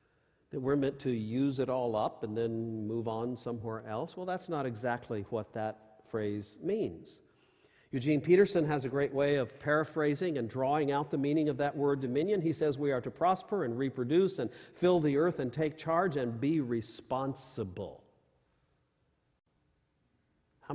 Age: 50-69